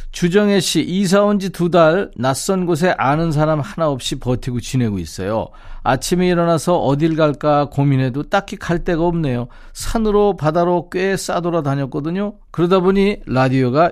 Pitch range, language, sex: 130-180 Hz, Korean, male